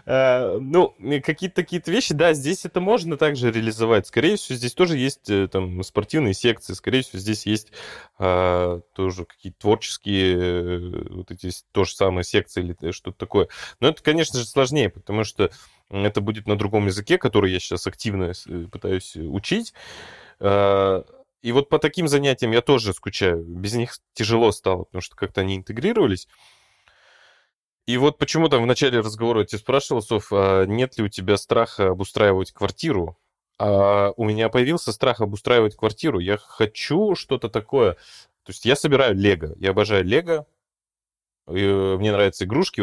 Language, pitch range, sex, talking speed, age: Russian, 95-125 Hz, male, 145 wpm, 20-39